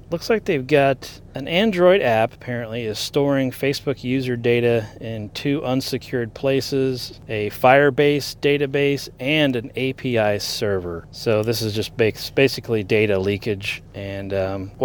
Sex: male